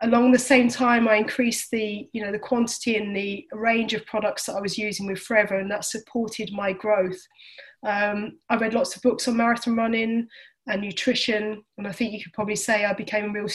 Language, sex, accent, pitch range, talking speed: English, female, British, 205-235 Hz, 215 wpm